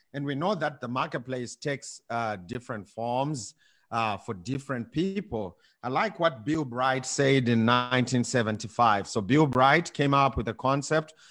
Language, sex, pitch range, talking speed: English, male, 110-140 Hz, 160 wpm